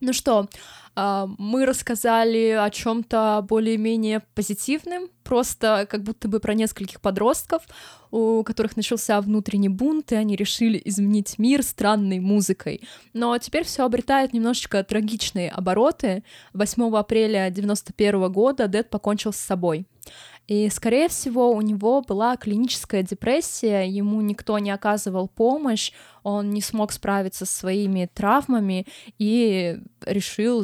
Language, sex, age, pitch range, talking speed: Russian, female, 20-39, 200-235 Hz, 125 wpm